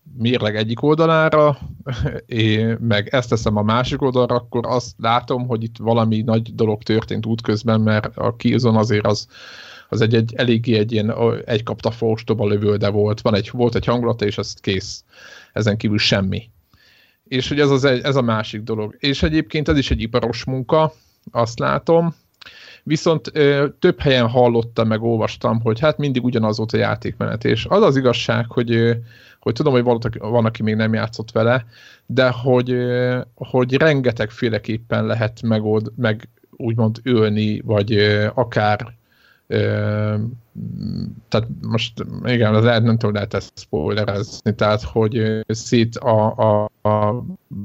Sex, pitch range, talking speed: male, 105-125 Hz, 150 wpm